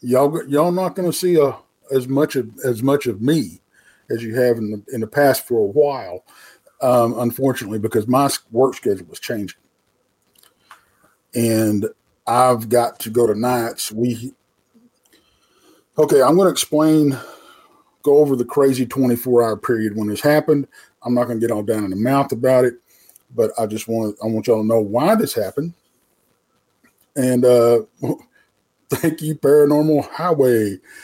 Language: English